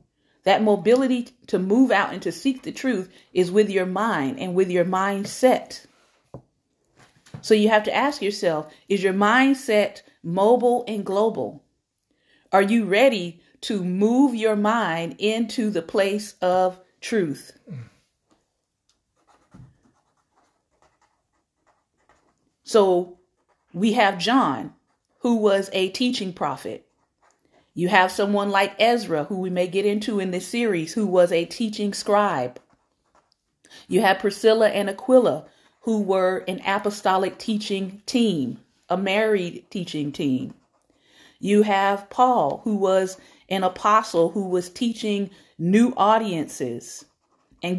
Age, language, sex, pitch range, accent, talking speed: 40-59, English, female, 185-220 Hz, American, 120 wpm